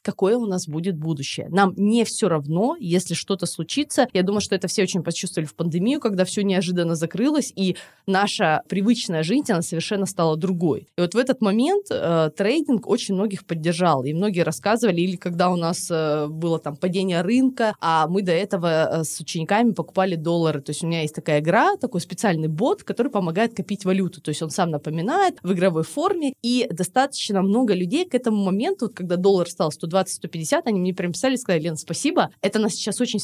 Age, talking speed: 20-39, 195 wpm